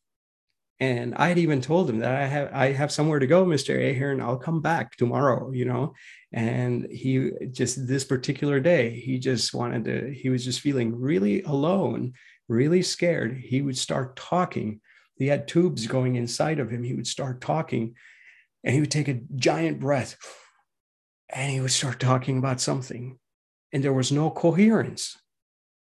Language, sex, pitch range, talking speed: English, male, 125-150 Hz, 170 wpm